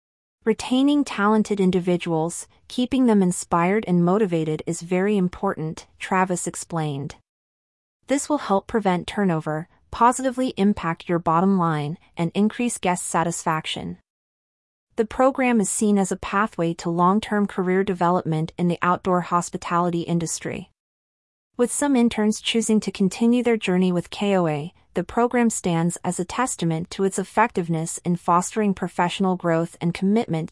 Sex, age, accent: female, 30-49, American